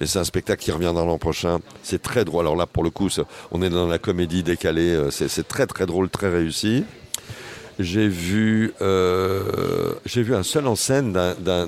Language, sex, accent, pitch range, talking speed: French, male, French, 85-115 Hz, 210 wpm